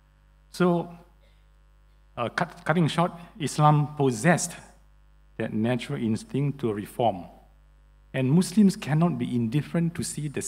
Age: 50-69